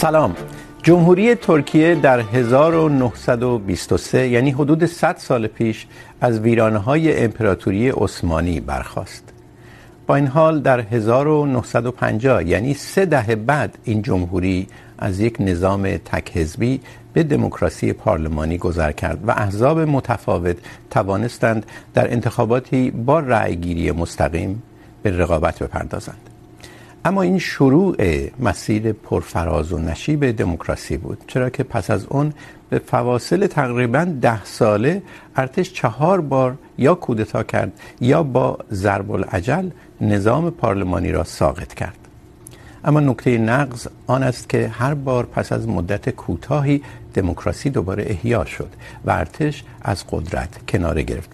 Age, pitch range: 60-79, 100-140 Hz